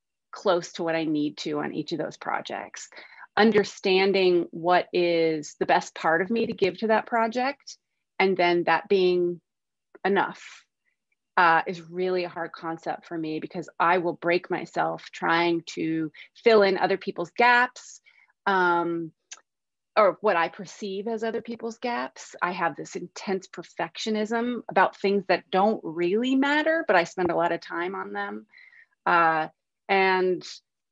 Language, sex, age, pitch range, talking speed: English, female, 30-49, 170-200 Hz, 155 wpm